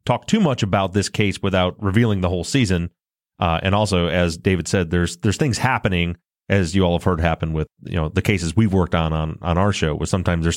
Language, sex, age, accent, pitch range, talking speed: English, male, 30-49, American, 85-105 Hz, 240 wpm